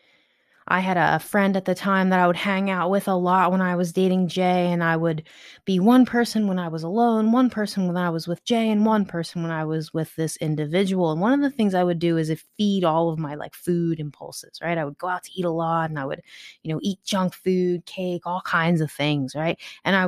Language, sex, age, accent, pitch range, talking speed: English, female, 20-39, American, 170-230 Hz, 260 wpm